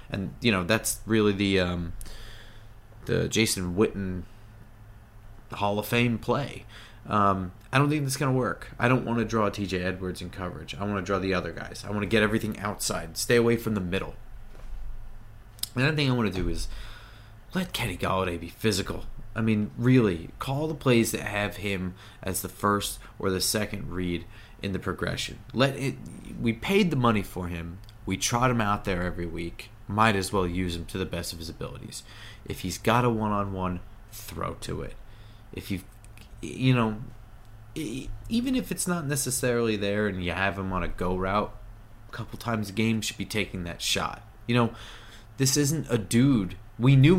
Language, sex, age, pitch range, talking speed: English, male, 30-49, 95-115 Hz, 190 wpm